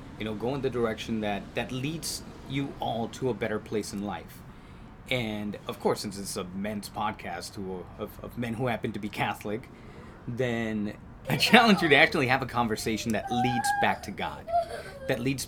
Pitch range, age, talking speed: 100-125 Hz, 30-49, 195 wpm